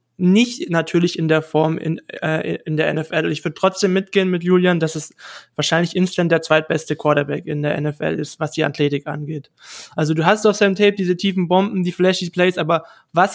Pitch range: 160-185 Hz